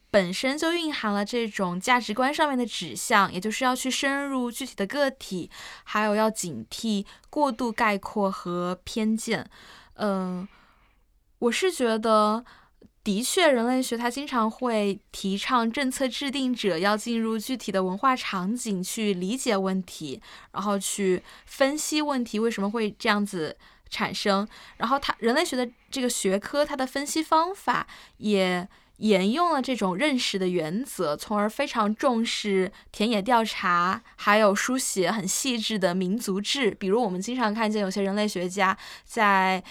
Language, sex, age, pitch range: Chinese, female, 10-29, 195-255 Hz